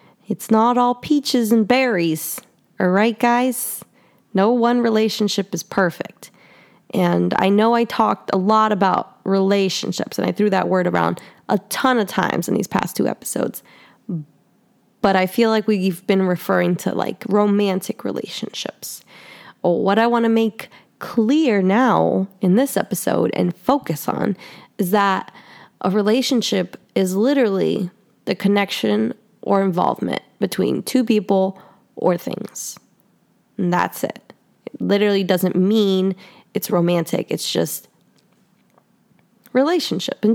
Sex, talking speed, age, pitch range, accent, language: female, 135 wpm, 20-39, 190-230 Hz, American, English